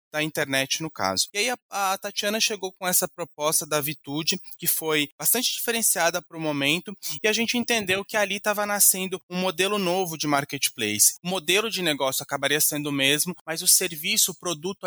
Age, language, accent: 20-39, Portuguese, Brazilian